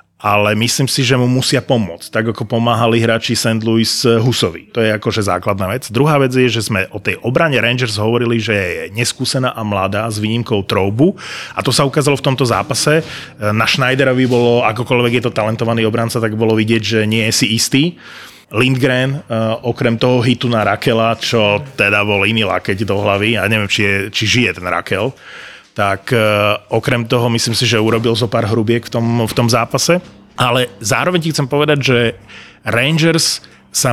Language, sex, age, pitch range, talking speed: Slovak, male, 30-49, 110-130 Hz, 190 wpm